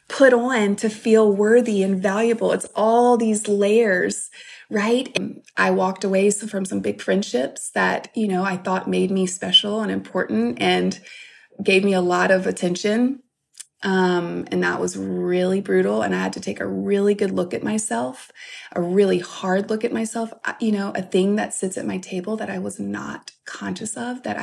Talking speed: 185 wpm